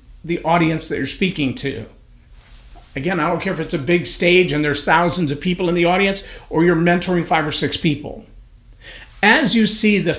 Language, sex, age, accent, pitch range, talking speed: English, male, 50-69, American, 150-195 Hz, 200 wpm